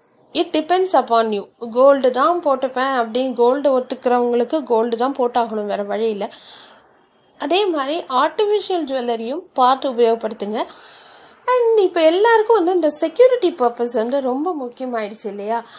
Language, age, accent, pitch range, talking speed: Tamil, 30-49, native, 235-330 Hz, 125 wpm